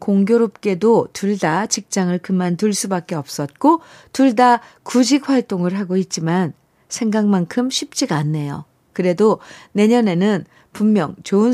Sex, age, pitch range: female, 50-69, 165-235 Hz